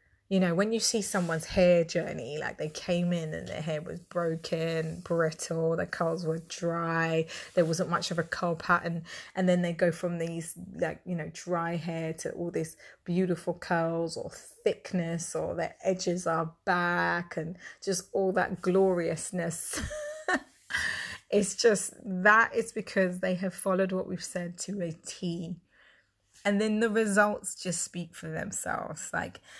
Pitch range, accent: 170-195 Hz, British